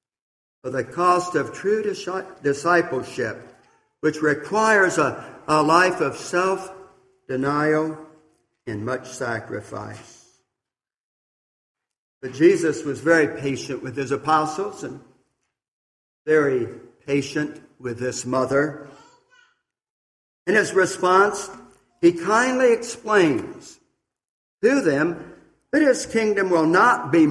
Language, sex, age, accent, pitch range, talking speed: English, male, 60-79, American, 140-190 Hz, 95 wpm